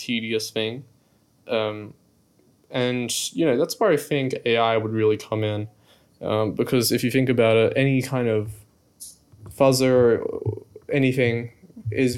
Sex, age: male, 20-39